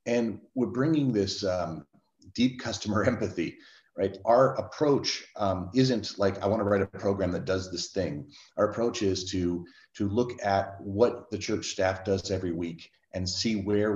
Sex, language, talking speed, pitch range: male, English, 175 wpm, 95-110 Hz